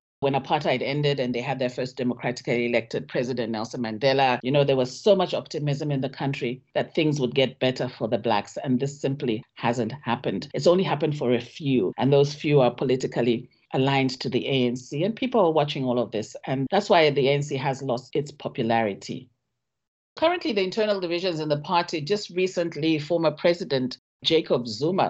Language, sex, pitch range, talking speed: English, female, 130-165 Hz, 190 wpm